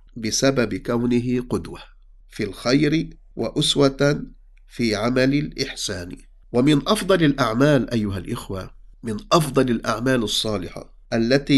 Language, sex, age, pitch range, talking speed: English, male, 50-69, 100-125 Hz, 100 wpm